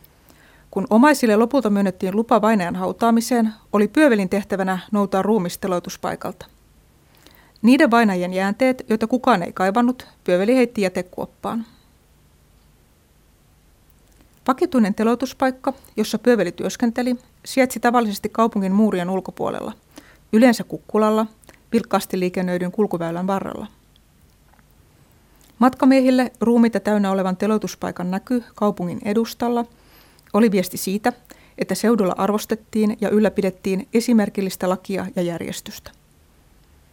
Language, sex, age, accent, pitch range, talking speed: Finnish, female, 30-49, native, 185-230 Hz, 95 wpm